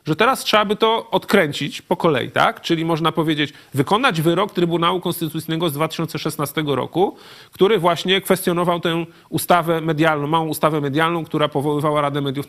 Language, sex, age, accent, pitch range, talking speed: Polish, male, 40-59, native, 145-185 Hz, 155 wpm